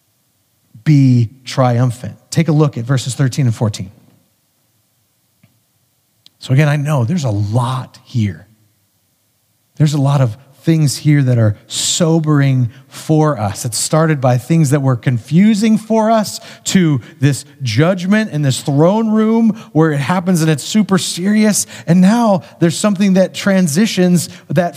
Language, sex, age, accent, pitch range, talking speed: English, male, 30-49, American, 125-180 Hz, 145 wpm